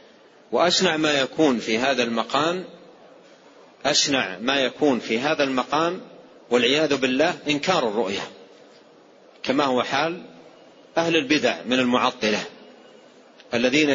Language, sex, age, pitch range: Arabic, male, 40-59, 125-165 Hz